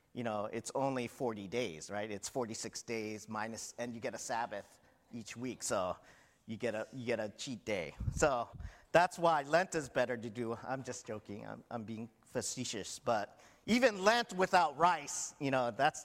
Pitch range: 120-170 Hz